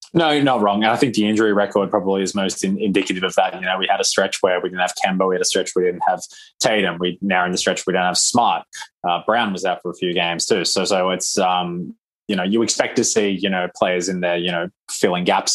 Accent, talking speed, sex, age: Australian, 280 wpm, male, 20-39